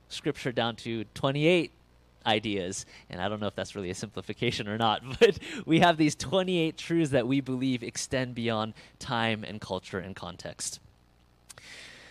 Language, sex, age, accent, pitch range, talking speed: English, male, 30-49, American, 105-145 Hz, 160 wpm